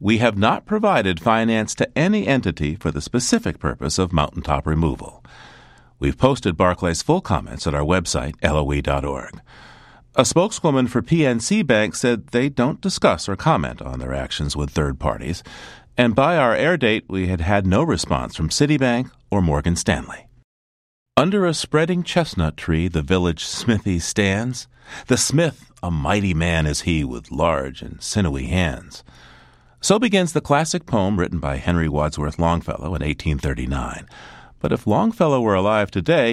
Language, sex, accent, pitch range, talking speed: English, male, American, 80-125 Hz, 155 wpm